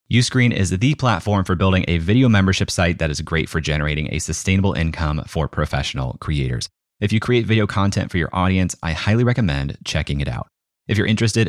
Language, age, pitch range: English, 30-49, 80-115 Hz